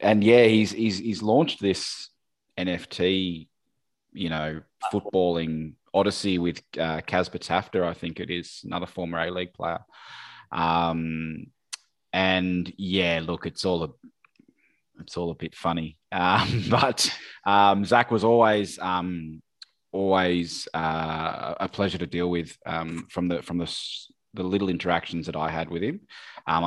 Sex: male